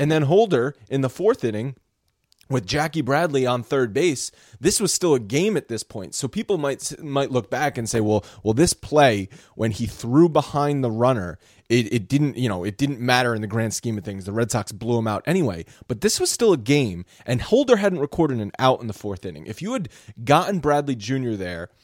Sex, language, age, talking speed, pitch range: male, English, 30-49, 230 wpm, 115-150 Hz